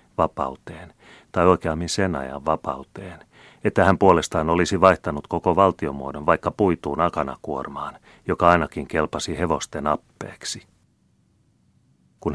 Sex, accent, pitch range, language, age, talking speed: male, native, 75-85 Hz, Finnish, 30-49, 105 wpm